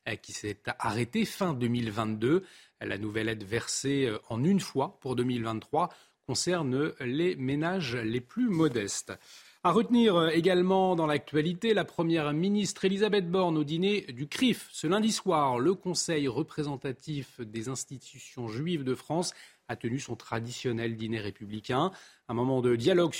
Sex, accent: male, French